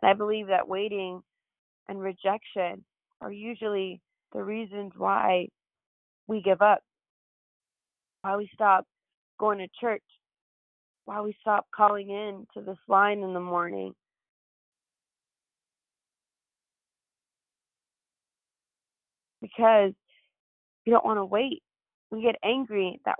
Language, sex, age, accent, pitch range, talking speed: English, female, 20-39, American, 185-210 Hz, 105 wpm